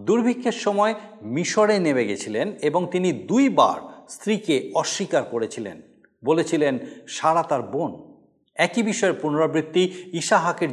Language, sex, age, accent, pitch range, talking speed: Bengali, male, 50-69, native, 140-200 Hz, 105 wpm